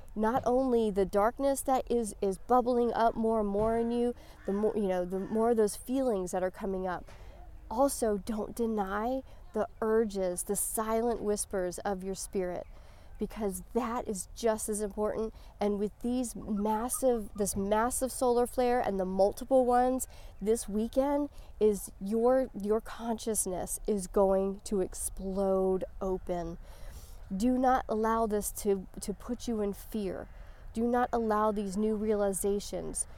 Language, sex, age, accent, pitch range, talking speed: English, female, 40-59, American, 195-225 Hz, 150 wpm